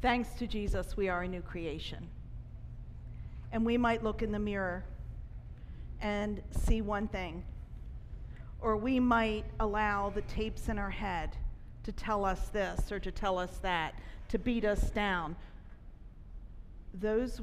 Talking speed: 145 wpm